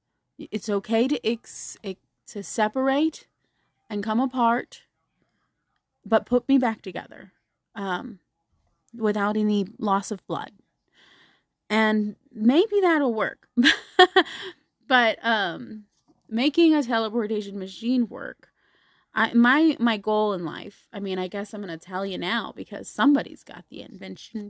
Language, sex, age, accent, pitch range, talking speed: English, female, 30-49, American, 195-240 Hz, 130 wpm